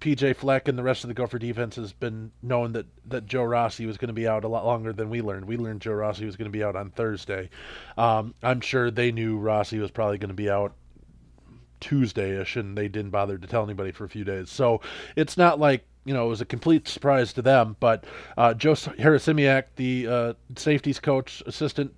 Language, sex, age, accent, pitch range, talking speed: English, male, 20-39, American, 110-135 Hz, 230 wpm